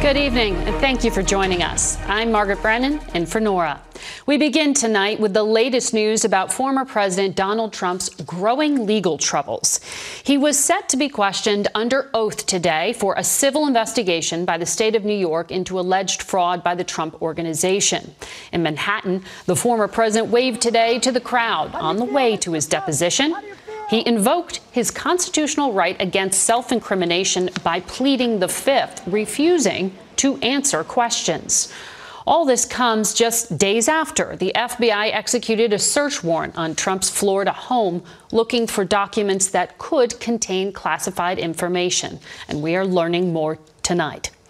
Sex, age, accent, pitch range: female, 40-59, American, 180-240 Hz